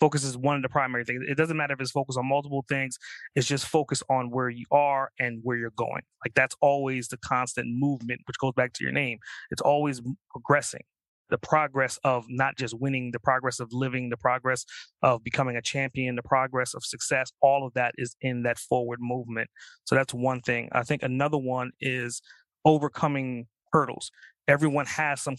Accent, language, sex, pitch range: American, English, male, 125-140 Hz